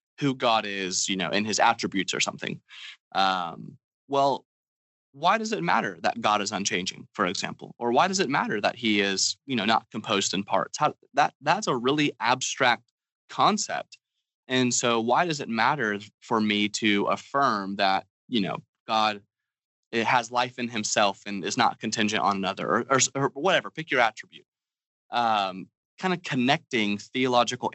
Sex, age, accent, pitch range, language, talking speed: male, 20-39, American, 105-130 Hz, English, 175 wpm